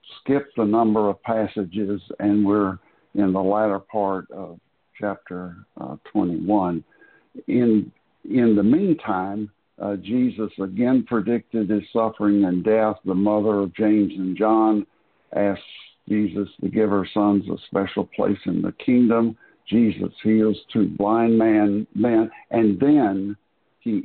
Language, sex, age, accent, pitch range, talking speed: English, male, 60-79, American, 100-110 Hz, 130 wpm